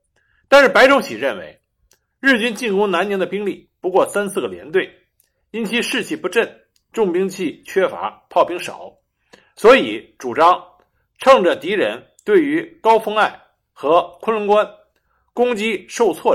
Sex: male